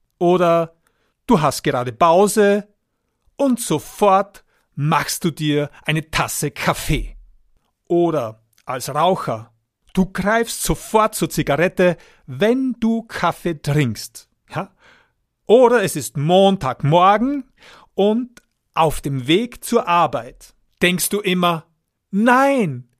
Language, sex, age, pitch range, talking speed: German, male, 50-69, 145-210 Hz, 105 wpm